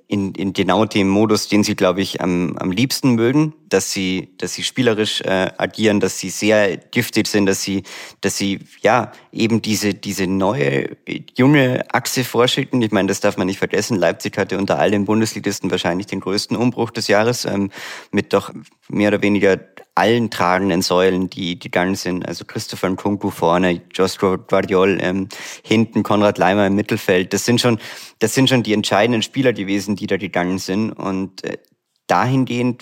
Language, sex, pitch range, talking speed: German, male, 95-115 Hz, 175 wpm